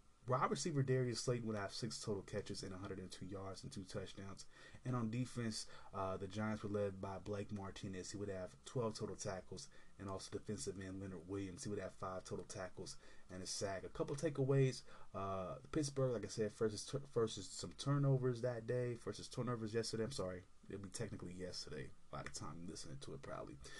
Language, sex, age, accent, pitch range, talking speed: English, male, 20-39, American, 95-110 Hz, 205 wpm